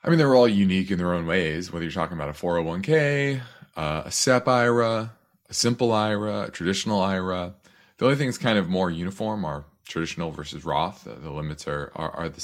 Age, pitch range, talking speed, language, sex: 30-49, 80-105 Hz, 210 wpm, English, male